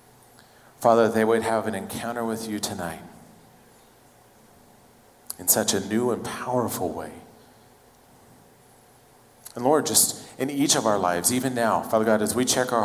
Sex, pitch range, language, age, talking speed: male, 105-125 Hz, English, 40-59, 150 wpm